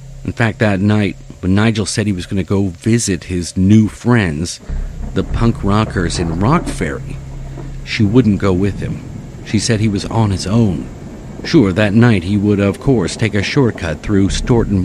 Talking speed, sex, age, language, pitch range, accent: 185 wpm, male, 50-69, English, 95-130 Hz, American